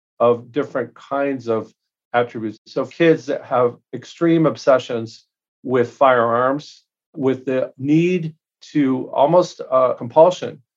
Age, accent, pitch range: 40-59, American, 135-170 Hz